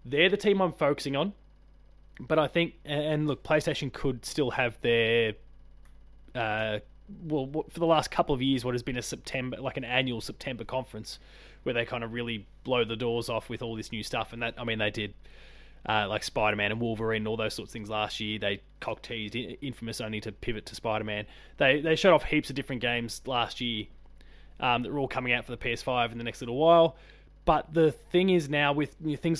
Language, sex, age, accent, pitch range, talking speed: English, male, 20-39, Australian, 115-145 Hz, 220 wpm